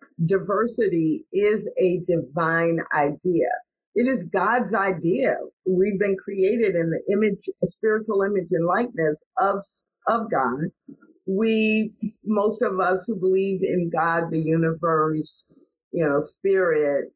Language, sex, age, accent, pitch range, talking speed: English, female, 50-69, American, 180-240 Hz, 125 wpm